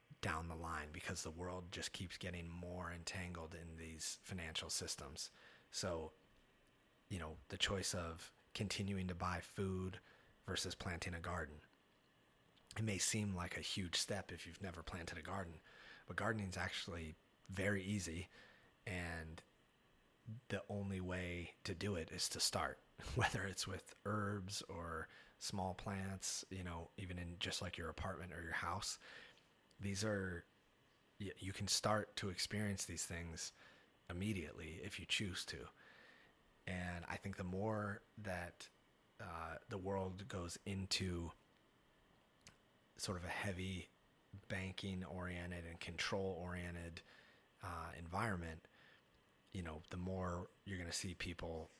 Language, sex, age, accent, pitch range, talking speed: English, male, 30-49, American, 85-95 Hz, 140 wpm